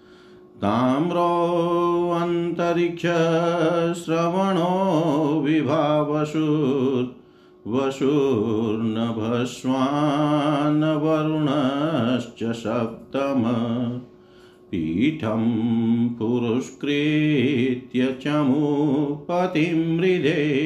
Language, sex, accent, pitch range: Hindi, male, native, 120-155 Hz